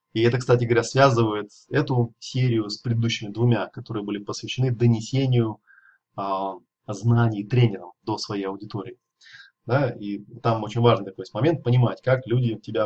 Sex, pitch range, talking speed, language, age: male, 110-130 Hz, 155 wpm, Russian, 20-39